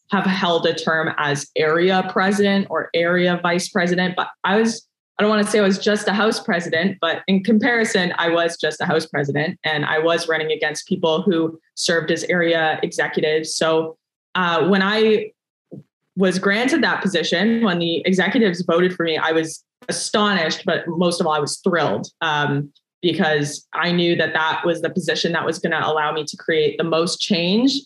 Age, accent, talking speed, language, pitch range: 20-39, American, 190 wpm, English, 160-195 Hz